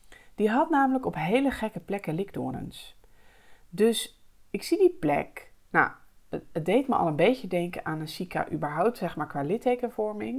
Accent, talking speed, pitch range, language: Dutch, 170 wpm, 155-230 Hz, English